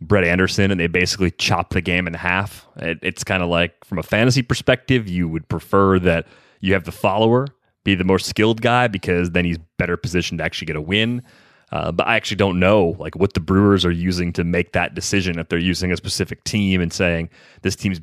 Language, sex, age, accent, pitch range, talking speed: English, male, 30-49, American, 85-105 Hz, 225 wpm